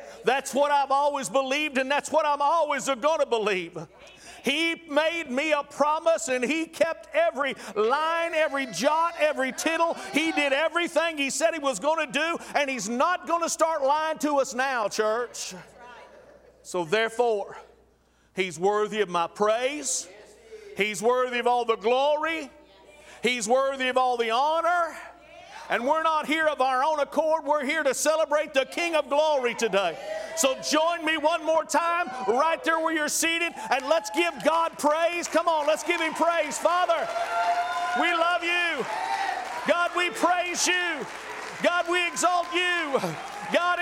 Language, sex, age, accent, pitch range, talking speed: English, male, 50-69, American, 265-335 Hz, 165 wpm